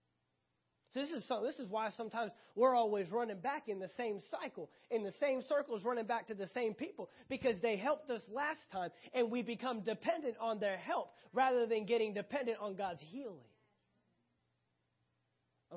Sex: male